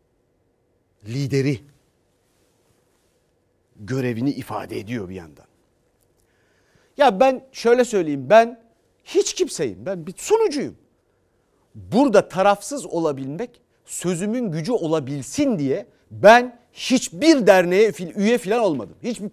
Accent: native